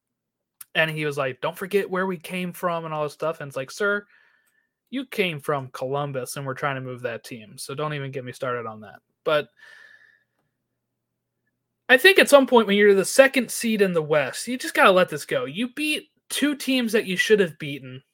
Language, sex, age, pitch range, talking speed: English, male, 20-39, 160-255 Hz, 220 wpm